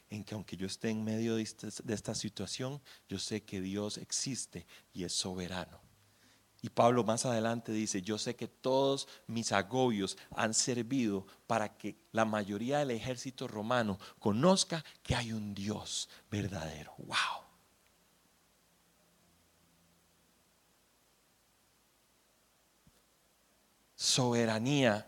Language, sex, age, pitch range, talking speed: Spanish, male, 40-59, 105-140 Hz, 110 wpm